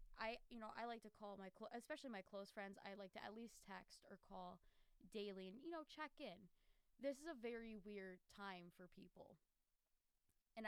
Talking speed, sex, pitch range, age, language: 195 wpm, female, 180-220 Hz, 10-29, English